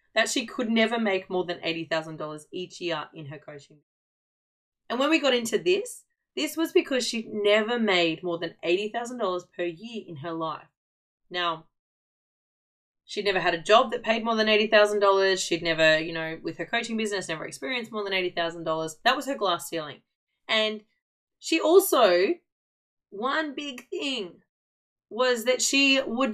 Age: 20-39